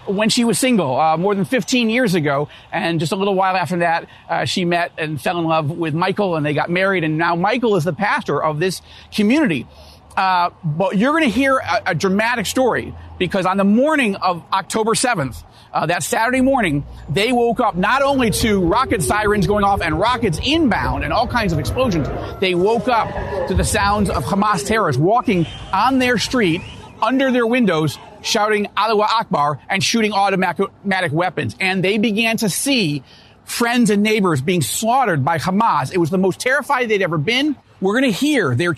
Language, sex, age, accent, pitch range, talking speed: English, male, 40-59, American, 170-230 Hz, 195 wpm